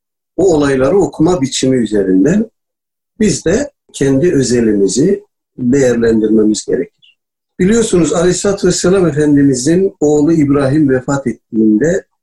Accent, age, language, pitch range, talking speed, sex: native, 50-69, Turkish, 125-165 Hz, 95 wpm, male